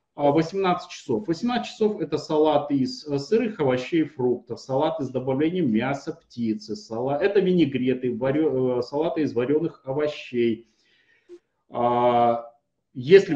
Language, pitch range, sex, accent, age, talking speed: Russian, 125-165 Hz, male, native, 30-49, 110 wpm